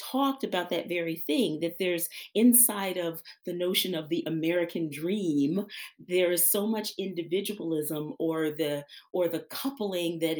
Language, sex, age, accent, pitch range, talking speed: English, female, 40-59, American, 155-205 Hz, 150 wpm